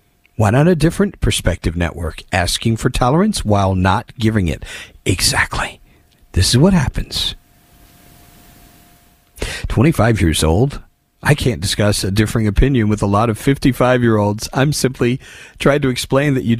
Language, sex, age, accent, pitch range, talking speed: English, male, 40-59, American, 95-130 Hz, 140 wpm